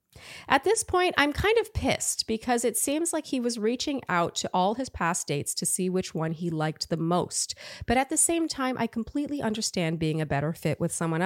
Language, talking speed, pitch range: English, 225 wpm, 180-280 Hz